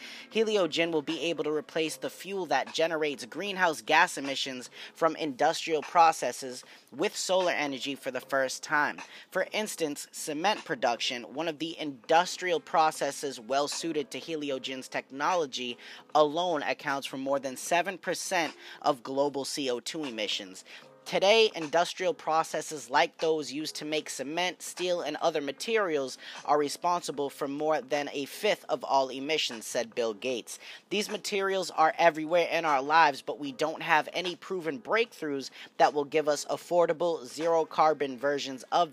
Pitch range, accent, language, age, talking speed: 140-175 Hz, American, English, 20-39, 145 wpm